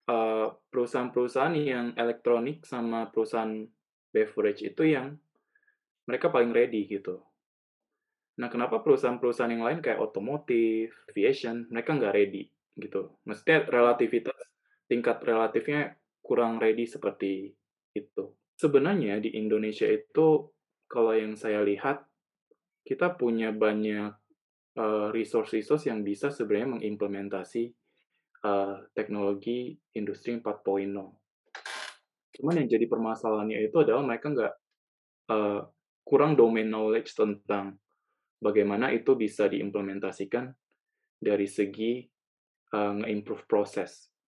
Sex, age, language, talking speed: male, 20-39, Indonesian, 105 wpm